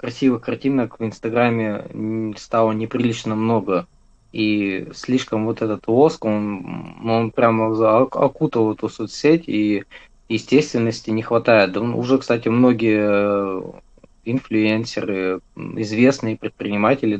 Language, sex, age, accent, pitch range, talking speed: Russian, male, 20-39, native, 105-125 Hz, 100 wpm